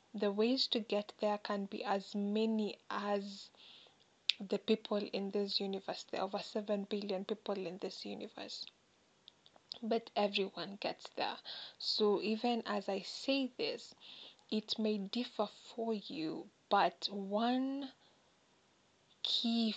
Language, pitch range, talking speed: English, 200-220 Hz, 130 wpm